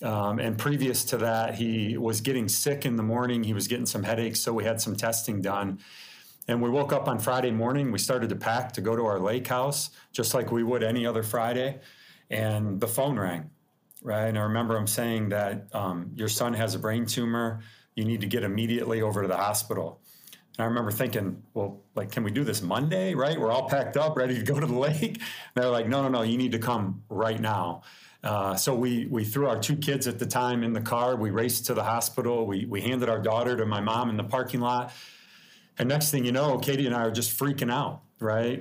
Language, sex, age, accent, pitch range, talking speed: English, male, 40-59, American, 110-125 Hz, 235 wpm